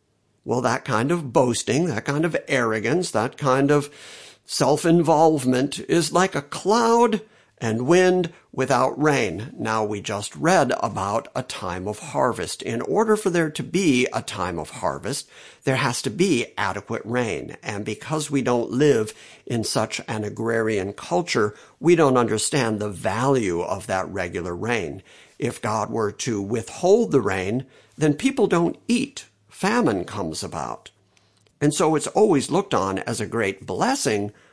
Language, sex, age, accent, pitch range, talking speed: English, male, 50-69, American, 105-145 Hz, 155 wpm